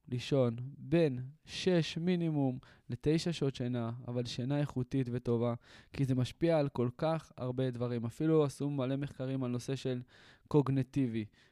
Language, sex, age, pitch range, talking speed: Hebrew, male, 20-39, 120-145 Hz, 140 wpm